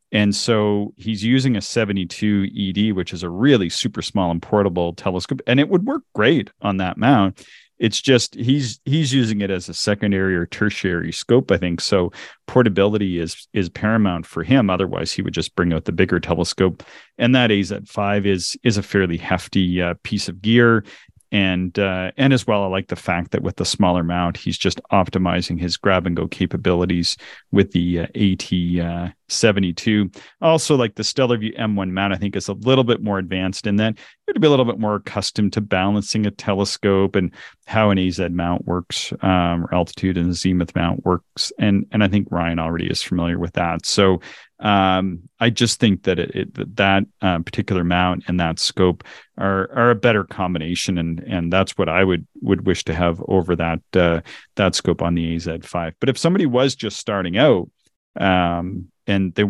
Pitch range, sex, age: 90-105 Hz, male, 40-59